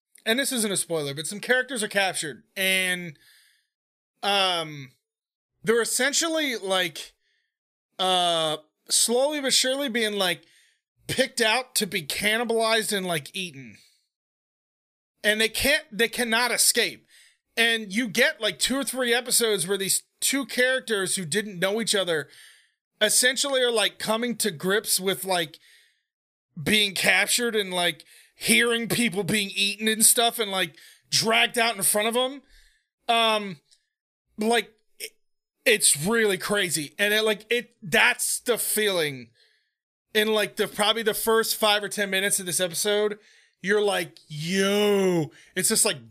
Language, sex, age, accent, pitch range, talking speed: English, male, 30-49, American, 190-235 Hz, 140 wpm